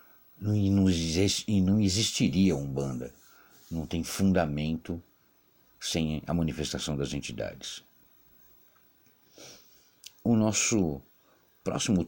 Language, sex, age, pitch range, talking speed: Portuguese, male, 60-79, 70-90 Hz, 75 wpm